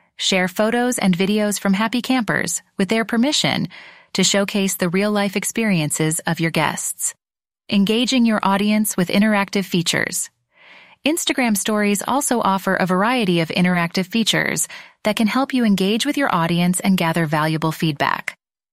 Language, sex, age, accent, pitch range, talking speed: English, female, 30-49, American, 180-230 Hz, 145 wpm